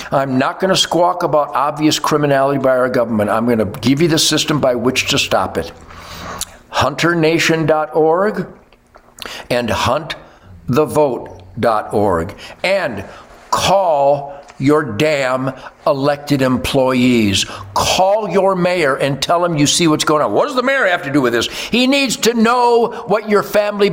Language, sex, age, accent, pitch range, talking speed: English, male, 60-79, American, 140-210 Hz, 150 wpm